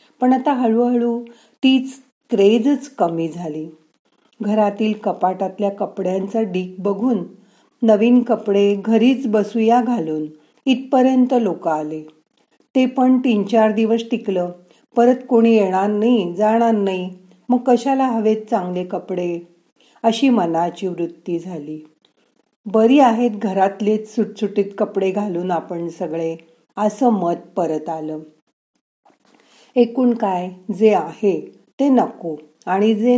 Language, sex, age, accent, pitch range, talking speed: Marathi, female, 40-59, native, 175-240 Hz, 110 wpm